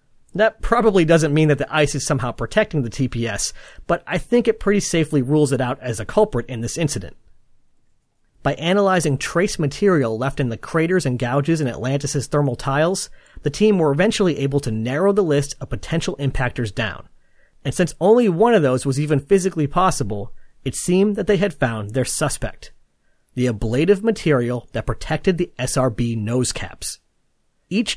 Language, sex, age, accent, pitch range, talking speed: English, male, 30-49, American, 130-185 Hz, 175 wpm